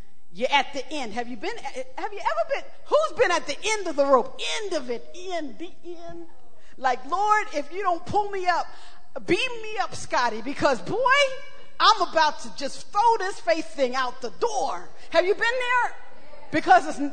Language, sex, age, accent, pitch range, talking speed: English, female, 40-59, American, 265-375 Hz, 195 wpm